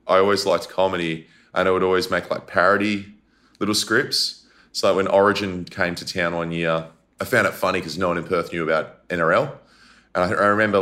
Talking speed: 200 wpm